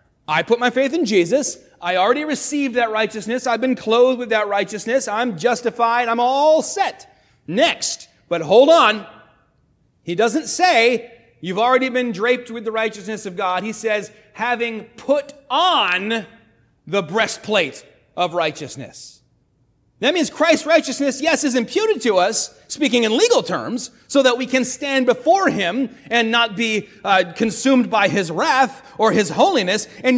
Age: 30-49